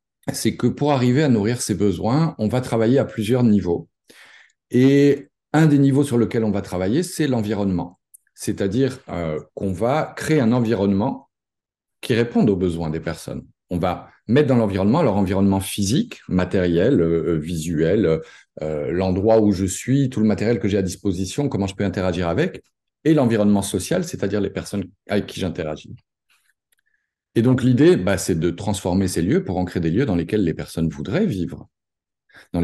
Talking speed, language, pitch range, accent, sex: 175 wpm, French, 95-125 Hz, French, male